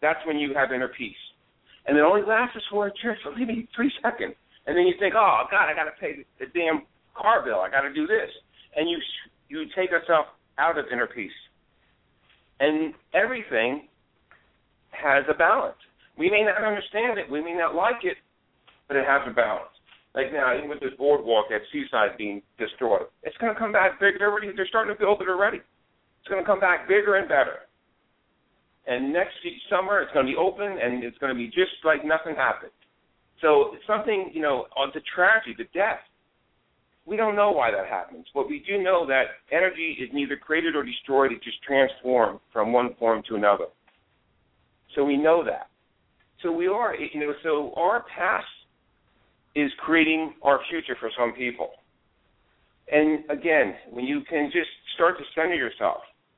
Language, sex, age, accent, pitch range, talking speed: English, male, 50-69, American, 140-220 Hz, 190 wpm